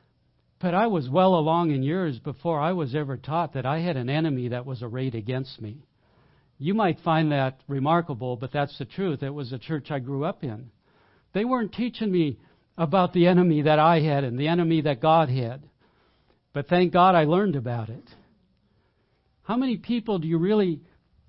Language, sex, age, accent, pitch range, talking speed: English, male, 60-79, American, 135-175 Hz, 190 wpm